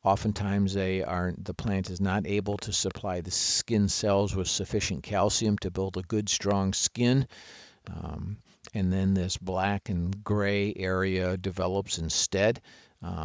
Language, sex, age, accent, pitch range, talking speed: English, male, 50-69, American, 90-105 Hz, 140 wpm